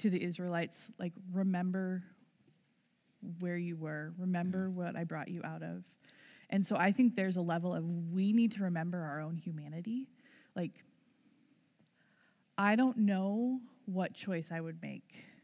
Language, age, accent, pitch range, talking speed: English, 20-39, American, 165-200 Hz, 150 wpm